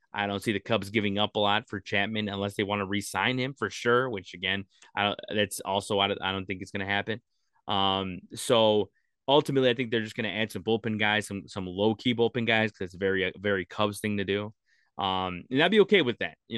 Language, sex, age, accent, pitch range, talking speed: English, male, 20-39, American, 95-110 Hz, 250 wpm